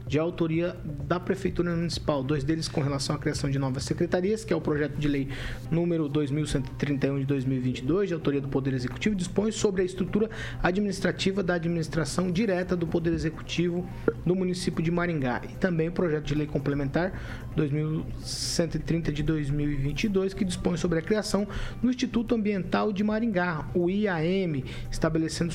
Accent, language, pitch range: Brazilian, Portuguese, 145-190 Hz